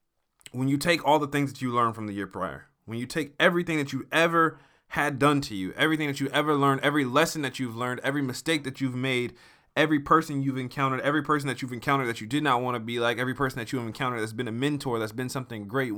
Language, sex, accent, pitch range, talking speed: English, male, American, 130-165 Hz, 260 wpm